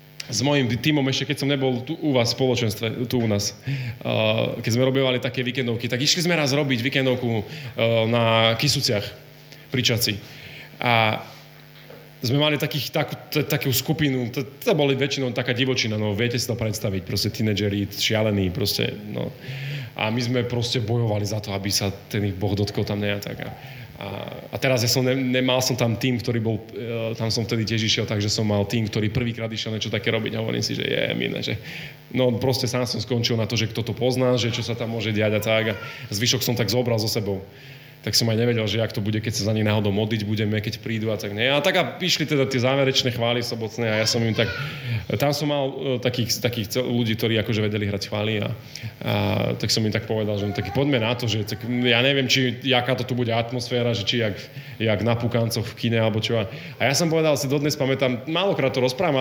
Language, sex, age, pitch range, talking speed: Slovak, male, 30-49, 110-135 Hz, 220 wpm